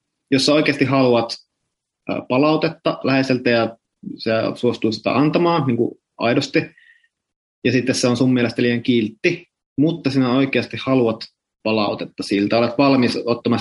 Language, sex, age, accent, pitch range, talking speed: Finnish, male, 20-39, native, 115-150 Hz, 135 wpm